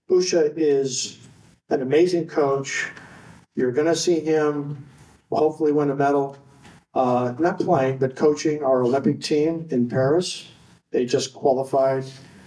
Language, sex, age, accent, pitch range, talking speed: English, male, 50-69, American, 130-155 Hz, 130 wpm